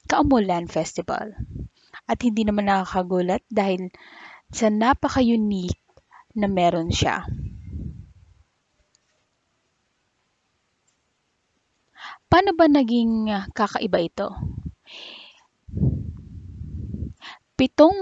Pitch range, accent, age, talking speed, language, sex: 185-235 Hz, native, 20-39, 60 wpm, Filipino, female